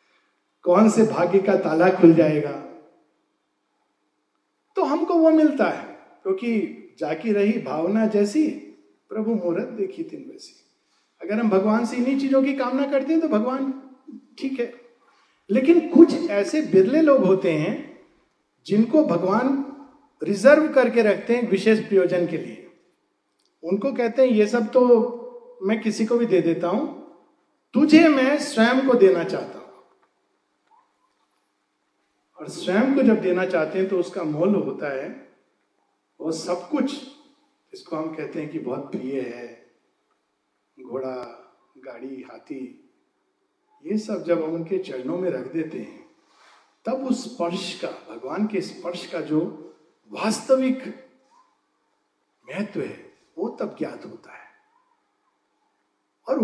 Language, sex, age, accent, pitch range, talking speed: Hindi, male, 50-69, native, 185-290 Hz, 135 wpm